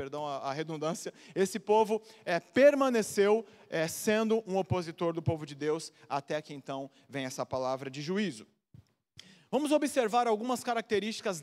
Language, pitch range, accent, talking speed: Portuguese, 170-235 Hz, Brazilian, 140 wpm